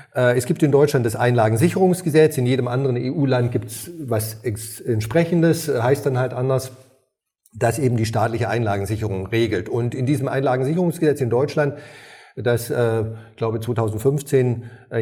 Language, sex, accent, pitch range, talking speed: German, male, German, 115-140 Hz, 140 wpm